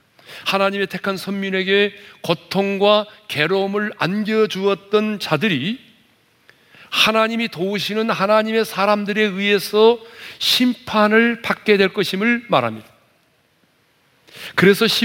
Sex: male